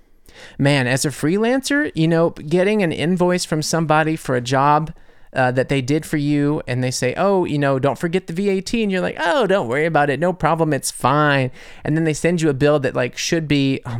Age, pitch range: 30-49, 130-170 Hz